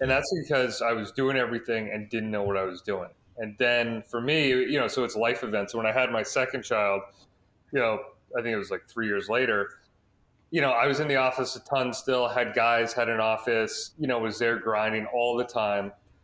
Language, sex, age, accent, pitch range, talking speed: English, male, 30-49, American, 105-125 Hz, 235 wpm